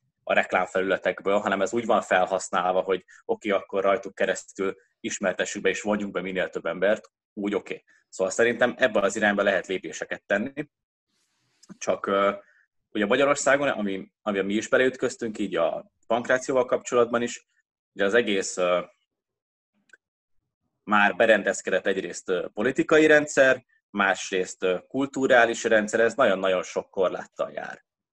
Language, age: Hungarian, 20-39